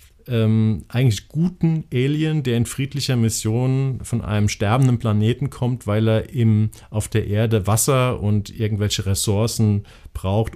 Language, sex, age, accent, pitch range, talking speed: German, male, 50-69, German, 105-125 Hz, 135 wpm